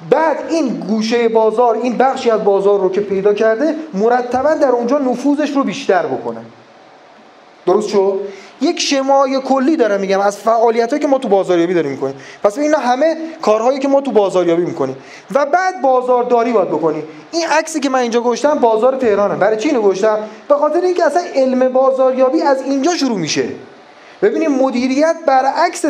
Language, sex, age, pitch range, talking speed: Persian, male, 30-49, 205-285 Hz, 170 wpm